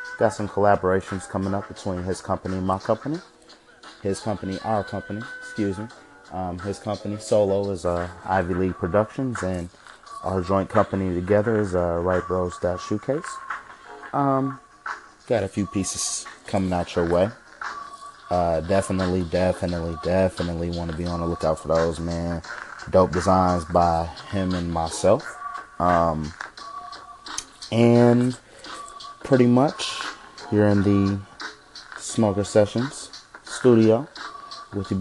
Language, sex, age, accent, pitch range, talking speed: English, male, 30-49, American, 90-105 Hz, 130 wpm